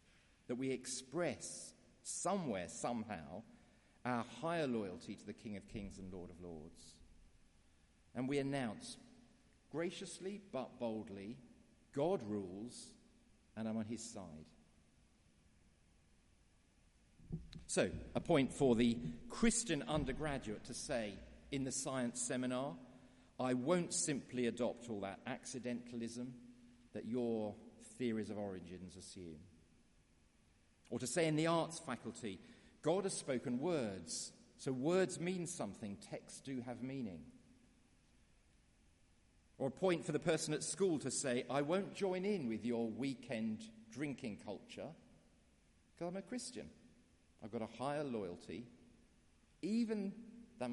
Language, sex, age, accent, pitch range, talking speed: English, male, 40-59, British, 100-160 Hz, 125 wpm